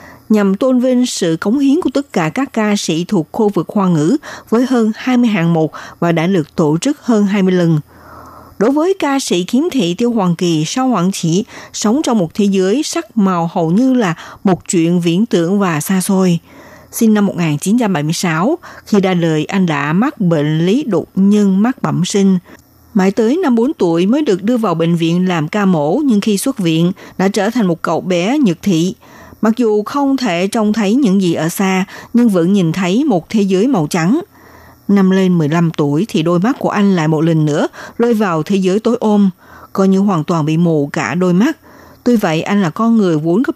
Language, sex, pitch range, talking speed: Vietnamese, female, 170-230 Hz, 215 wpm